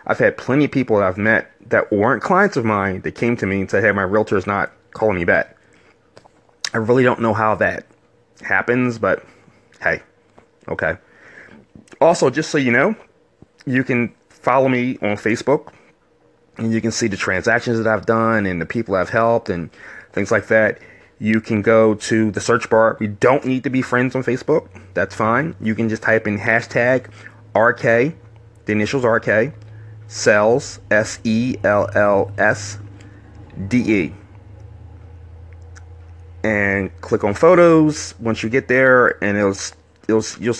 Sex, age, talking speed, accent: male, 30-49, 155 wpm, American